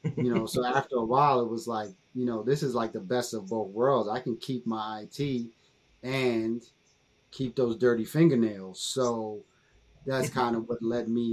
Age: 30-49